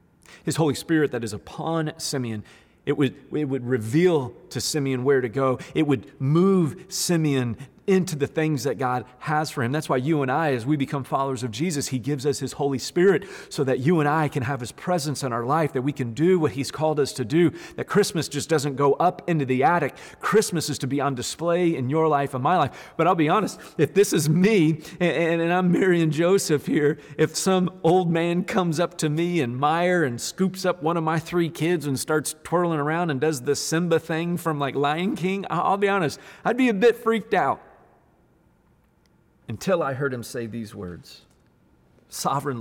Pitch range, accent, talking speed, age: 125-165 Hz, American, 215 wpm, 40-59